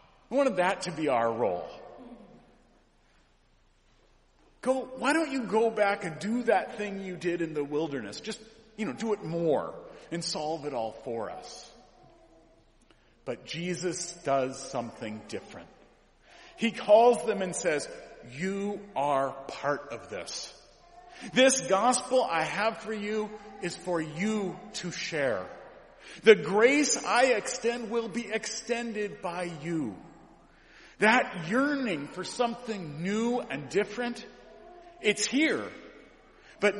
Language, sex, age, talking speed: English, male, 50-69, 130 wpm